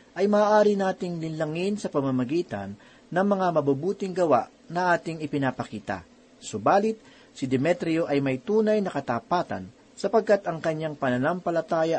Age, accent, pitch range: 40-59, native, 135-185 Hz